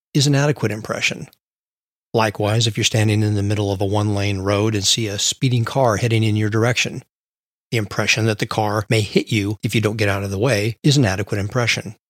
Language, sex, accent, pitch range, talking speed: English, male, American, 105-120 Hz, 220 wpm